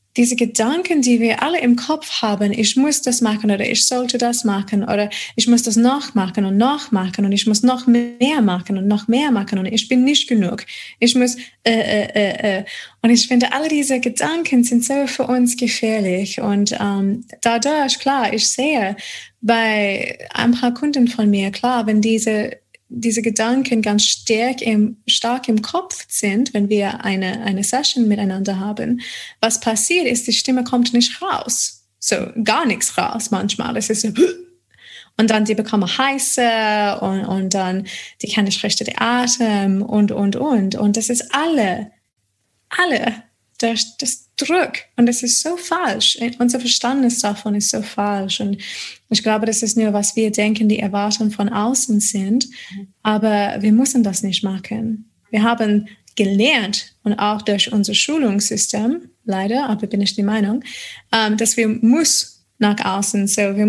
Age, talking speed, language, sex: 20-39, 170 wpm, German, female